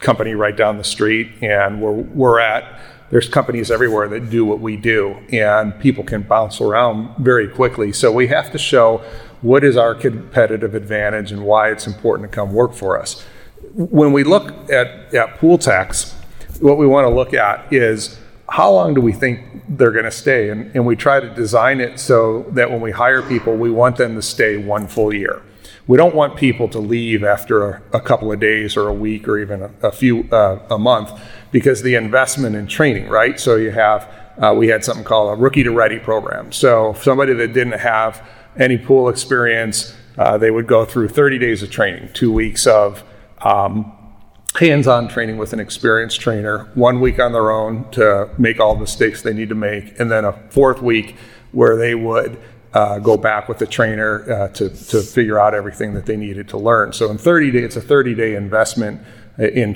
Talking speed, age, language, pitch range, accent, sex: 205 wpm, 40-59, English, 105-125 Hz, American, male